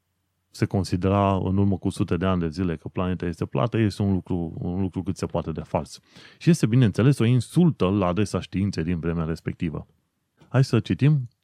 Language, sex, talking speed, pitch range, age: Romanian, male, 200 wpm, 95-125 Hz, 30-49